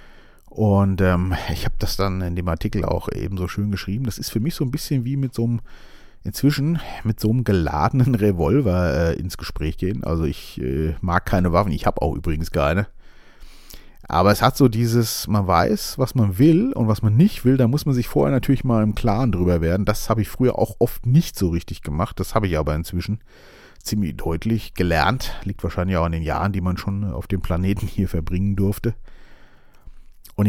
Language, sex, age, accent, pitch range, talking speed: German, male, 40-59, German, 90-120 Hz, 205 wpm